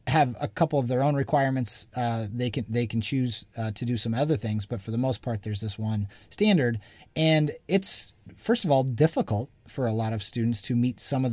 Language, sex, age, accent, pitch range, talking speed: English, male, 30-49, American, 115-150 Hz, 230 wpm